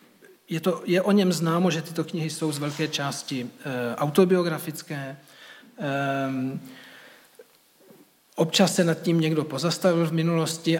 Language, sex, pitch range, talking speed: Czech, male, 145-170 Hz, 115 wpm